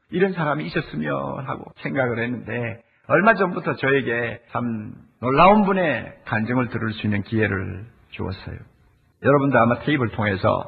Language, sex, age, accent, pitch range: Korean, male, 50-69, native, 110-175 Hz